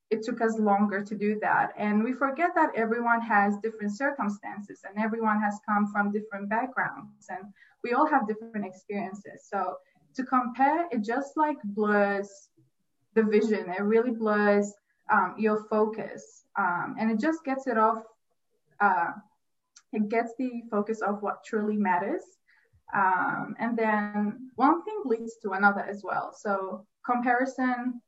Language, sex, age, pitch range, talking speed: English, female, 20-39, 200-230 Hz, 150 wpm